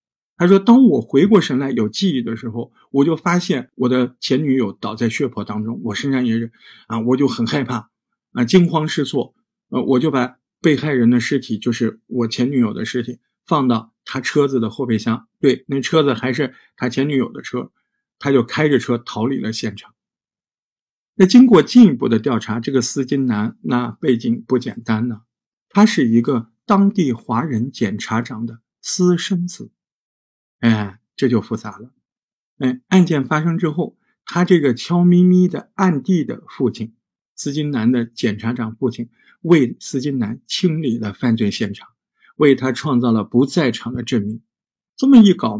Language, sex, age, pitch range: Chinese, male, 50-69, 115-155 Hz